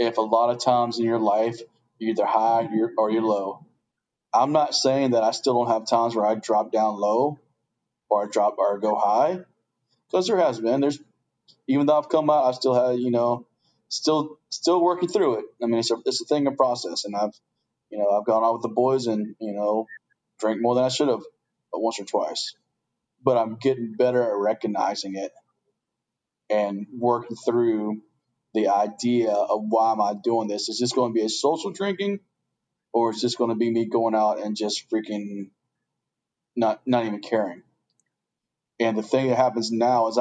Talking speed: 205 wpm